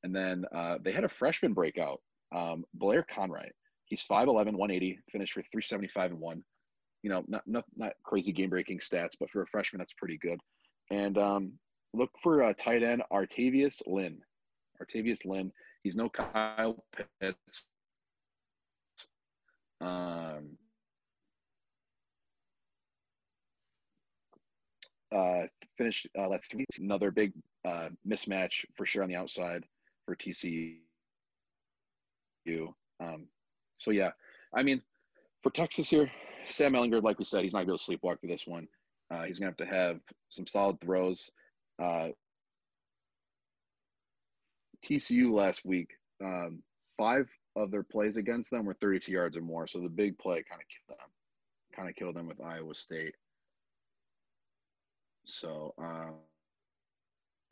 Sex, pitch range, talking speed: male, 85-110 Hz, 130 wpm